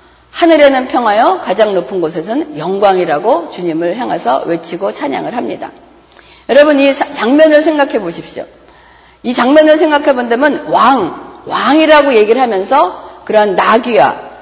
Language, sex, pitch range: Korean, female, 185-290 Hz